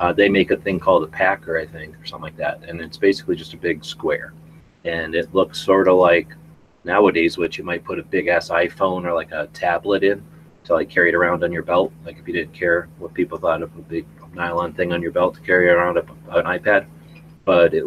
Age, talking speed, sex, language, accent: 30-49, 245 wpm, male, English, American